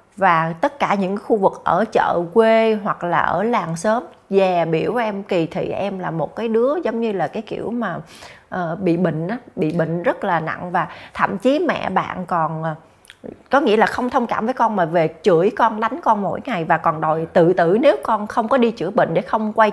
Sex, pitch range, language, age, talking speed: female, 180-245 Hz, Vietnamese, 20-39, 235 wpm